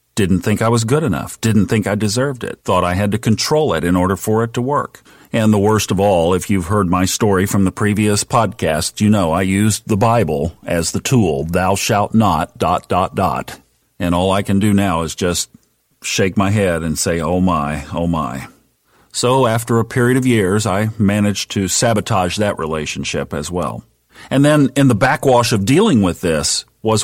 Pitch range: 95-125 Hz